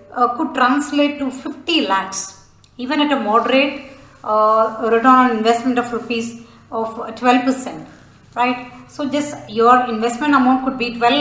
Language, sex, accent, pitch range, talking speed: English, female, Indian, 225-265 Hz, 150 wpm